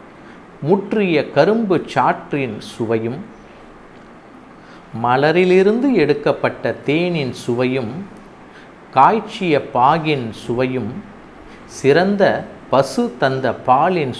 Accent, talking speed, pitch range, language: native, 65 wpm, 115-185 Hz, Tamil